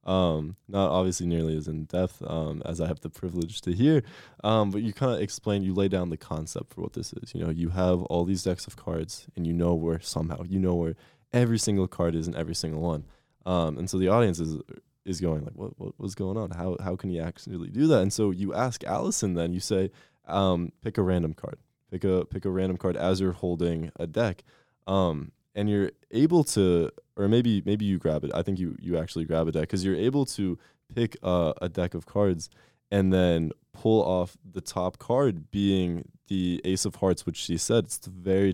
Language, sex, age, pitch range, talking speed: English, male, 20-39, 85-100 Hz, 230 wpm